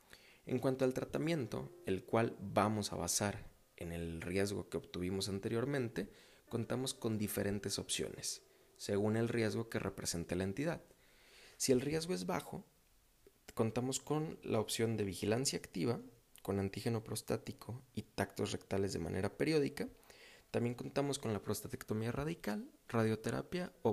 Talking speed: 140 wpm